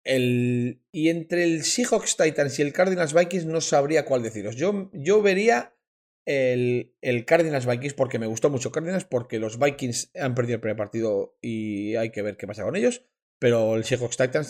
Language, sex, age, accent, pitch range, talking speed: Spanish, male, 30-49, Spanish, 110-155 Hz, 175 wpm